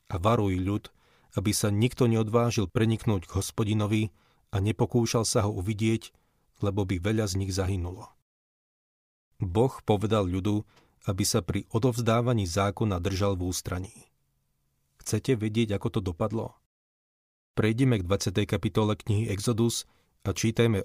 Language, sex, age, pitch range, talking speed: Slovak, male, 40-59, 95-115 Hz, 130 wpm